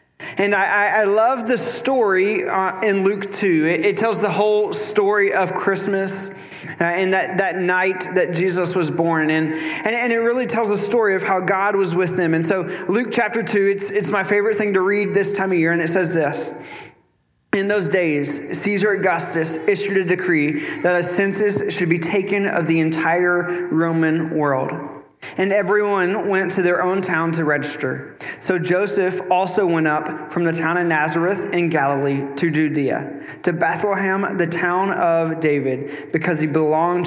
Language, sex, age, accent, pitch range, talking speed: English, male, 20-39, American, 155-195 Hz, 180 wpm